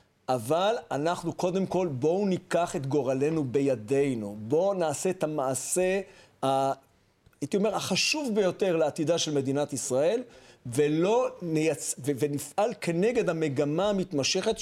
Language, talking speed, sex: Hebrew, 110 wpm, male